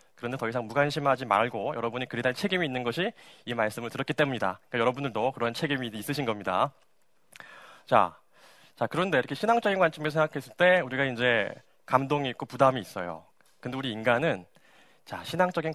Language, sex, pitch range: Korean, male, 115-165 Hz